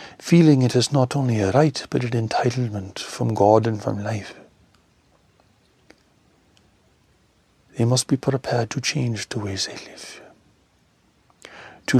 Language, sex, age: English, male, 60-79